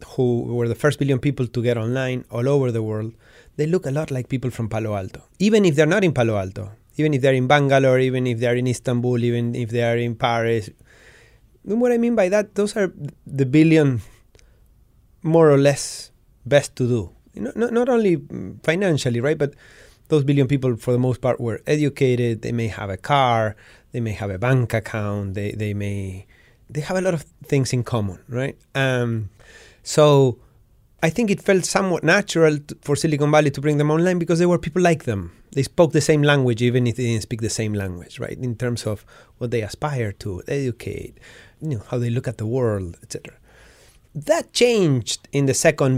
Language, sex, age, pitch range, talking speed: English, male, 30-49, 115-155 Hz, 205 wpm